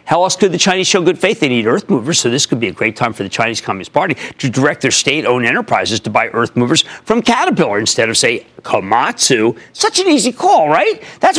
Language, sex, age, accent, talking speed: English, male, 50-69, American, 235 wpm